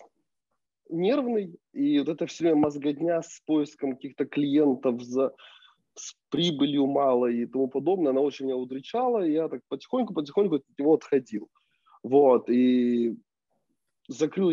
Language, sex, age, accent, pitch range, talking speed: Russian, male, 20-39, native, 135-200 Hz, 130 wpm